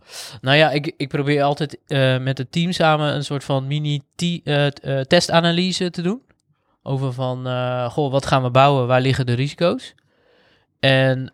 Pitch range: 120-140 Hz